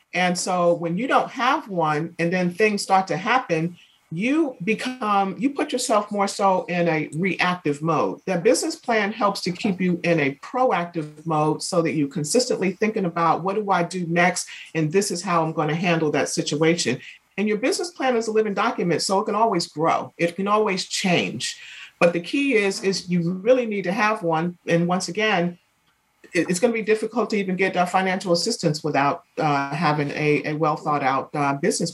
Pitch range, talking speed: 165-210 Hz, 195 wpm